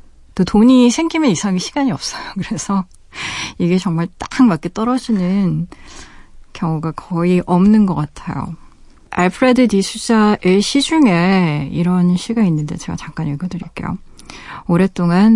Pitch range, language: 165-210 Hz, Korean